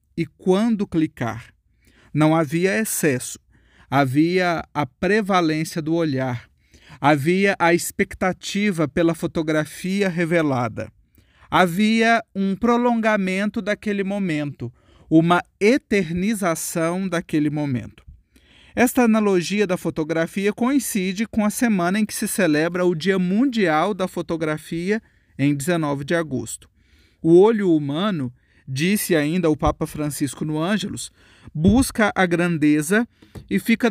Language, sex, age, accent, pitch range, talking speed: Portuguese, male, 40-59, Brazilian, 150-200 Hz, 110 wpm